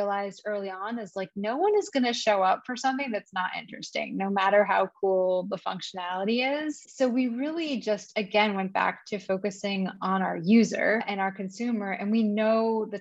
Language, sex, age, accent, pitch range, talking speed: English, female, 20-39, American, 195-230 Hz, 195 wpm